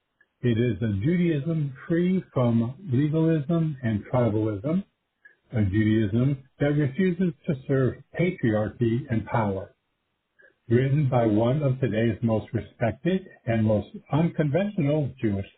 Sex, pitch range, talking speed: male, 115-160 Hz, 110 wpm